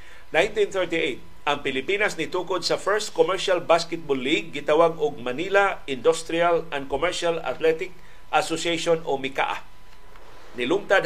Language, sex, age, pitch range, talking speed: Filipino, male, 50-69, 150-220 Hz, 110 wpm